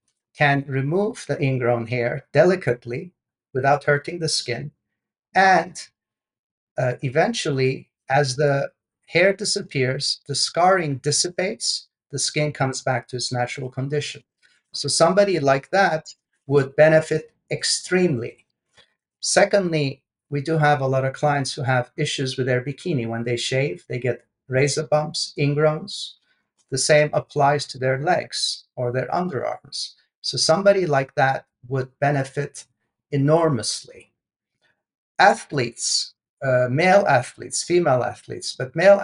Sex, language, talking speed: male, English, 125 wpm